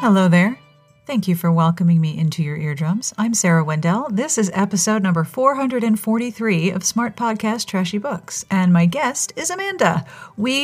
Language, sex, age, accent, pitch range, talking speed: English, female, 40-59, American, 170-235 Hz, 165 wpm